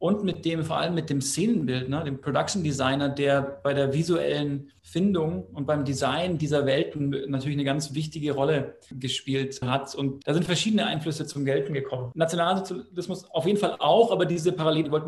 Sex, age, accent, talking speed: male, 40-59, German, 180 wpm